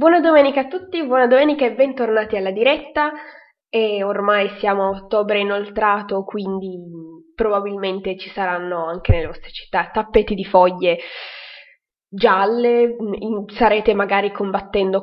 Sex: female